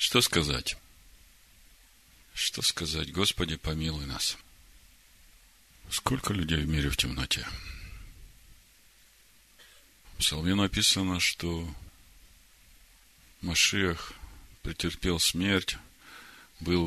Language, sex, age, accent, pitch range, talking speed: Russian, male, 50-69, native, 80-95 Hz, 75 wpm